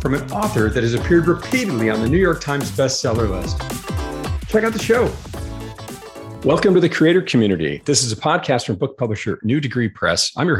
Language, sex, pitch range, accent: English, male, 100-155 Hz, American